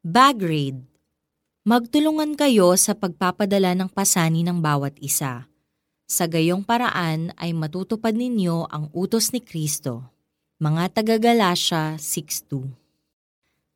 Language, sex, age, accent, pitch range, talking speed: Filipino, female, 20-39, native, 160-230 Hz, 100 wpm